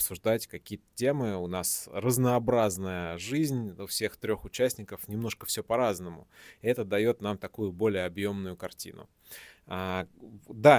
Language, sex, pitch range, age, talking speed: Russian, male, 95-115 Hz, 20-39, 130 wpm